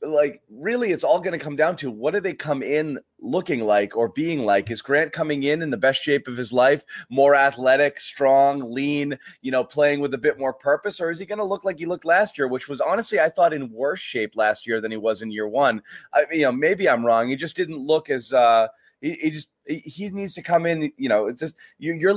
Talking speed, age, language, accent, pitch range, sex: 250 wpm, 30-49, English, American, 125-165 Hz, male